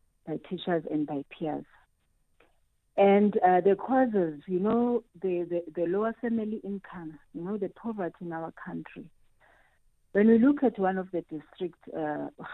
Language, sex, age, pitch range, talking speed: English, female, 40-59, 160-200 Hz, 160 wpm